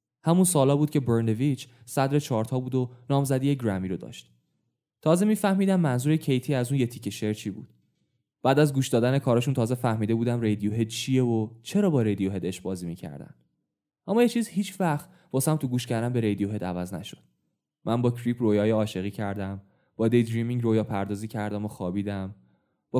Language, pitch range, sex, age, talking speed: Persian, 105-135 Hz, male, 10-29, 185 wpm